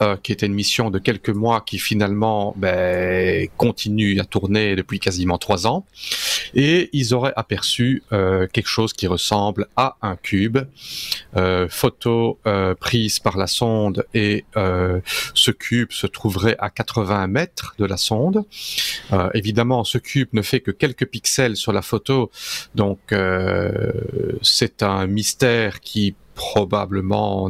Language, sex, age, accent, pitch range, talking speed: French, male, 40-59, French, 95-120 Hz, 150 wpm